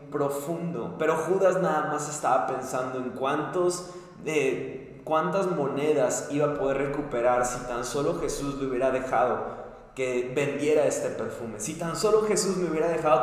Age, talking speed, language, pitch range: 20-39, 155 wpm, Spanish, 130-155 Hz